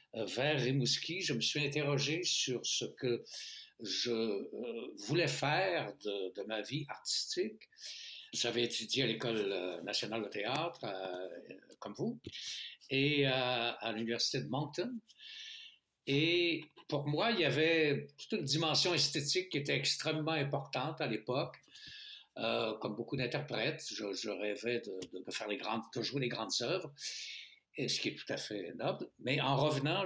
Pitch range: 125-160 Hz